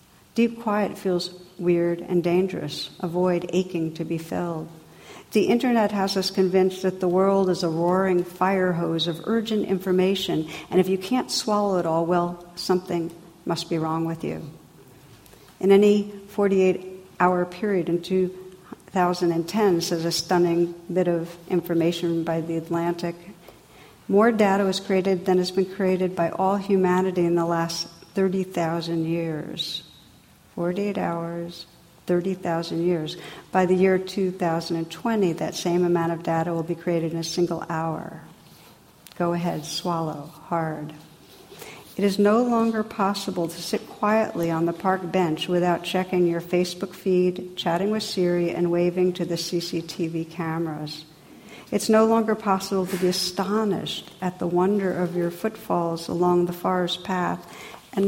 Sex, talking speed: female, 145 wpm